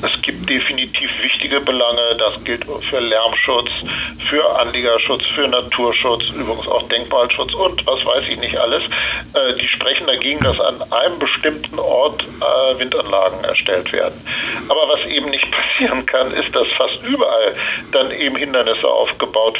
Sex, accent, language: male, German, German